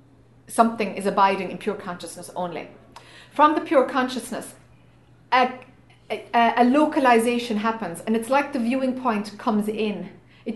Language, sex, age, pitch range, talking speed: English, female, 30-49, 215-275 Hz, 140 wpm